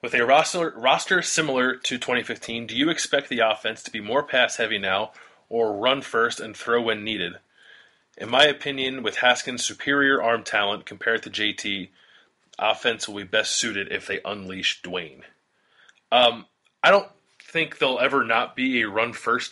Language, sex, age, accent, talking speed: English, male, 20-39, American, 165 wpm